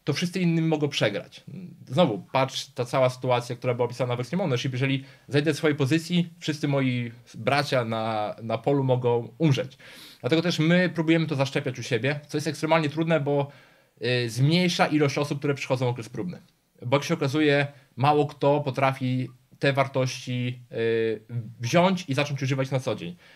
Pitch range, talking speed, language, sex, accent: 125-150 Hz, 170 wpm, Polish, male, native